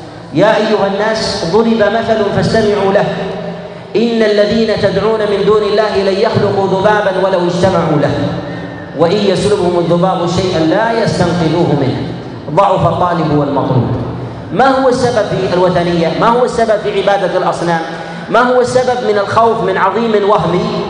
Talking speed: 140 wpm